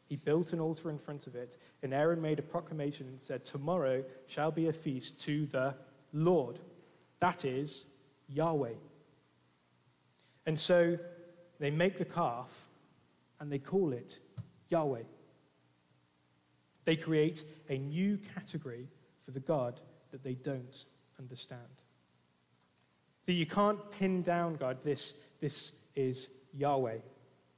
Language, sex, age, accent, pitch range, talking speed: English, male, 30-49, British, 130-165 Hz, 130 wpm